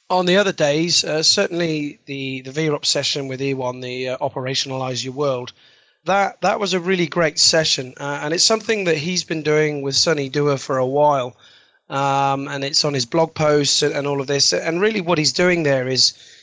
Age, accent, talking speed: 30-49, British, 210 wpm